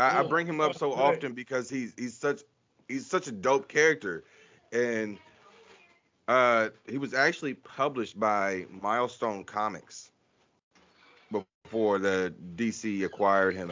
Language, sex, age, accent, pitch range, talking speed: English, male, 30-49, American, 95-115 Hz, 125 wpm